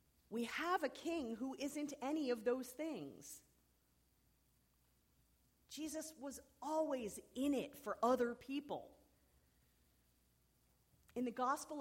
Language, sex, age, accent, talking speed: English, female, 40-59, American, 105 wpm